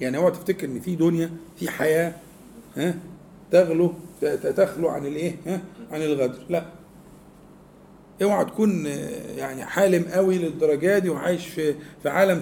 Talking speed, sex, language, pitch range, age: 125 wpm, male, Arabic, 170-225 Hz, 50-69